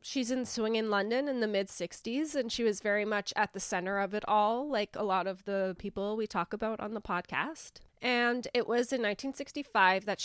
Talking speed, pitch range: 215 wpm, 190-230 Hz